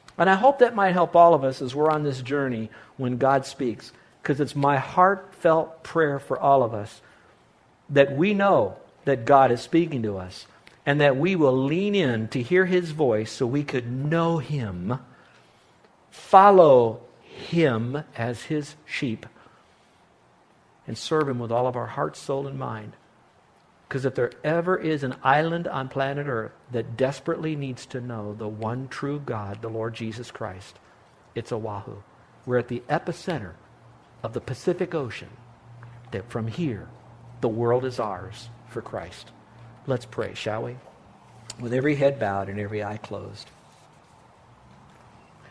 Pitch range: 115-150 Hz